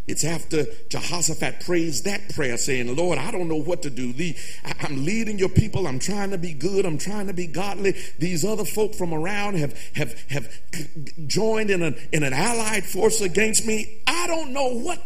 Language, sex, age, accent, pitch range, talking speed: English, male, 50-69, American, 150-205 Hz, 180 wpm